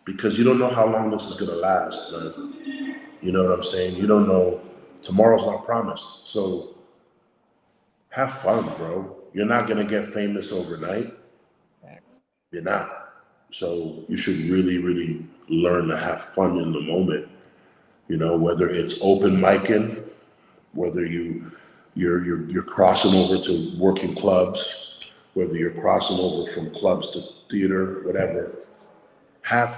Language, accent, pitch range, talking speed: English, American, 90-110 Hz, 145 wpm